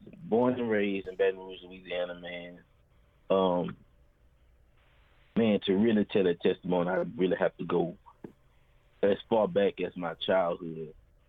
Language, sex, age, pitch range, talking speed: English, male, 30-49, 85-100 Hz, 140 wpm